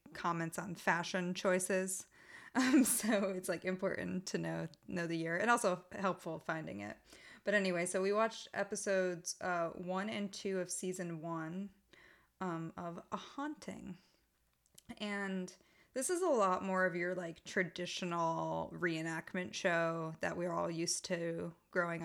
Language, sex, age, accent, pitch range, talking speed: English, female, 20-39, American, 160-185 Hz, 150 wpm